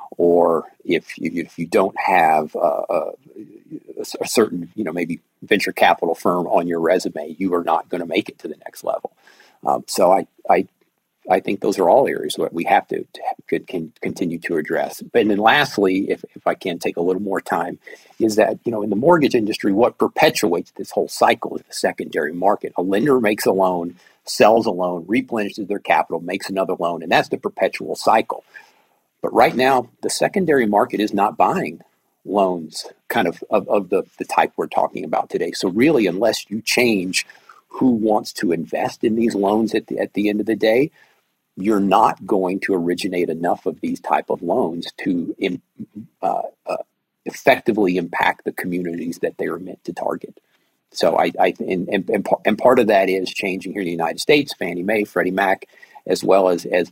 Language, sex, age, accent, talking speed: English, male, 50-69, American, 200 wpm